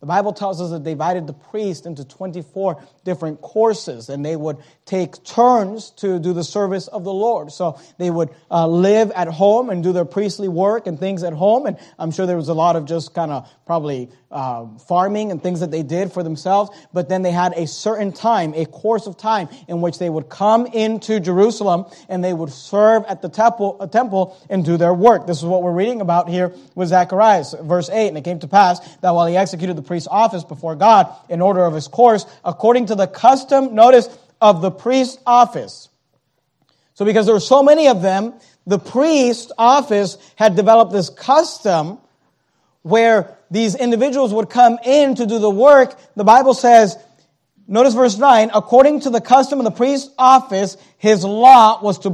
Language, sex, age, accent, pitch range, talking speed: English, male, 30-49, American, 175-225 Hz, 200 wpm